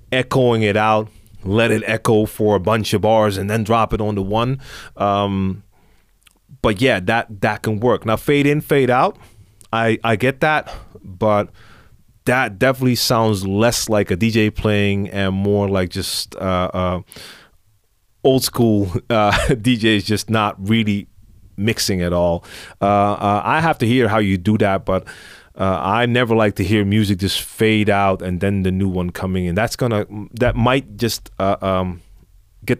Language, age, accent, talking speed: English, 30-49, American, 175 wpm